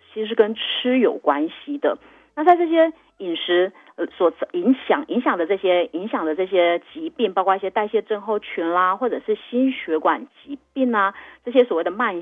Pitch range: 185-285 Hz